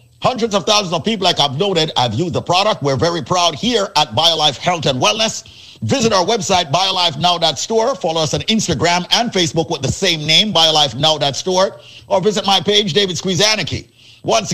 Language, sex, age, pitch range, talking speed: English, male, 50-69, 145-185 Hz, 175 wpm